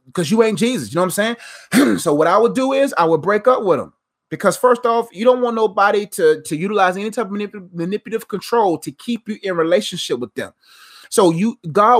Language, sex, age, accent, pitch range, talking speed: English, male, 30-49, American, 165-215 Hz, 230 wpm